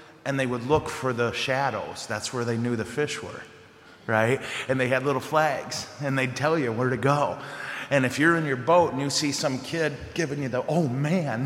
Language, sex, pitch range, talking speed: English, male, 105-135 Hz, 225 wpm